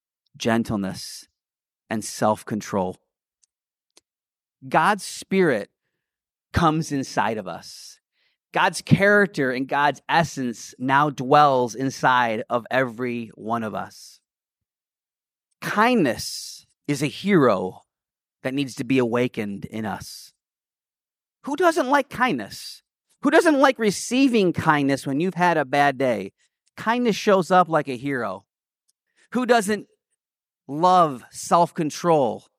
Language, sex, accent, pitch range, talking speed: English, male, American, 135-205 Hz, 105 wpm